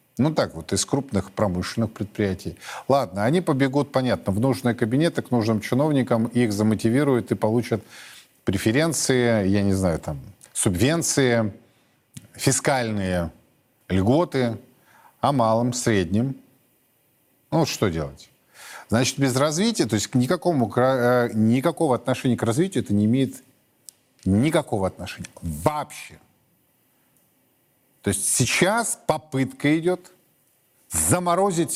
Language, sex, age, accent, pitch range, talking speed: Russian, male, 50-69, native, 110-150 Hz, 110 wpm